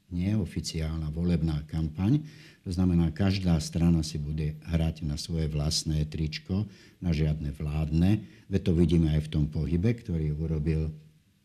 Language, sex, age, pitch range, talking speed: Slovak, male, 60-79, 80-95 Hz, 130 wpm